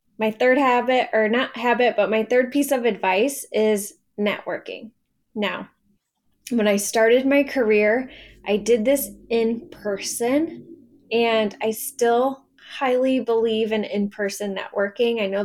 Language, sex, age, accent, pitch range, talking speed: English, female, 10-29, American, 210-250 Hz, 140 wpm